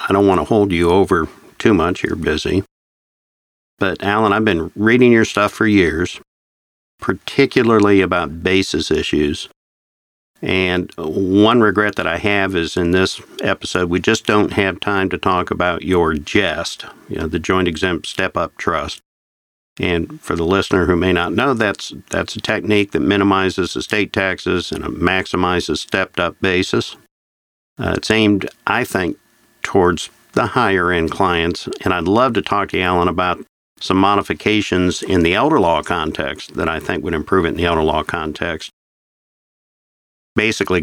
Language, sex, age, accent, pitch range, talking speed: English, male, 50-69, American, 80-100 Hz, 160 wpm